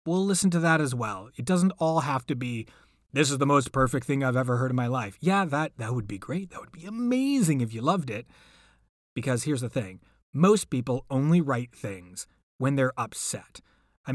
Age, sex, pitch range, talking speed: 30-49, male, 120-165 Hz, 215 wpm